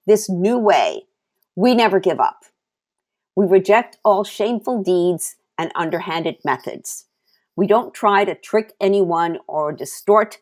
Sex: female